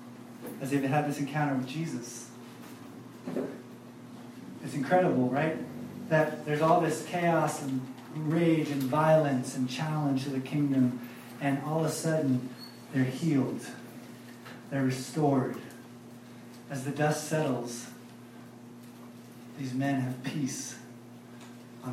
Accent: American